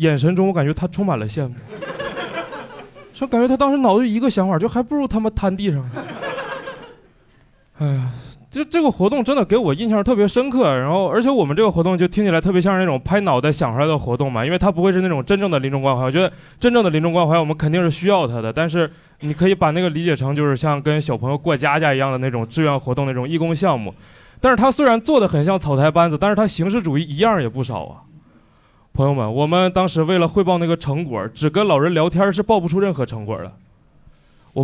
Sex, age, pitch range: male, 20-39, 135-190 Hz